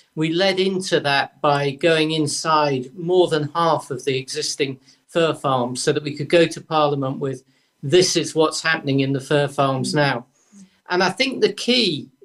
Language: English